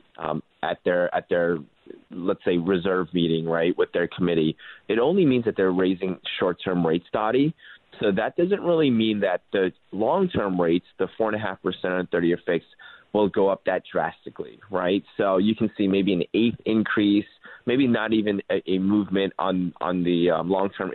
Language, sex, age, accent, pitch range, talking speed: English, male, 30-49, American, 90-110 Hz, 185 wpm